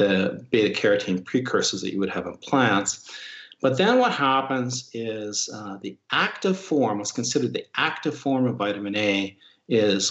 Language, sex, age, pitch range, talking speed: English, male, 50-69, 100-125 Hz, 165 wpm